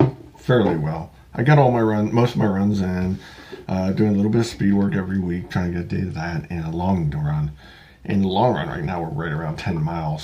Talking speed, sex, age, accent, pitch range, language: 260 wpm, male, 50-69, American, 90-115 Hz, English